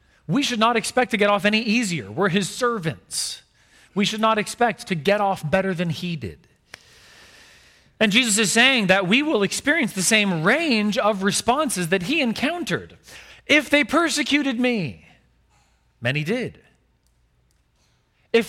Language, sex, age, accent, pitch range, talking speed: English, male, 40-59, American, 170-240 Hz, 150 wpm